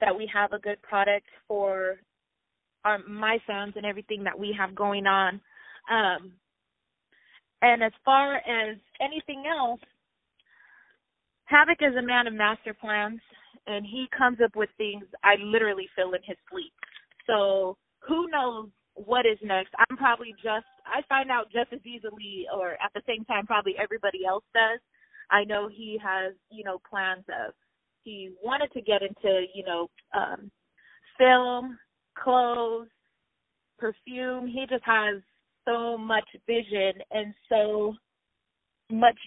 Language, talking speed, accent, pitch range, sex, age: English, 145 wpm, American, 195-235 Hz, female, 20-39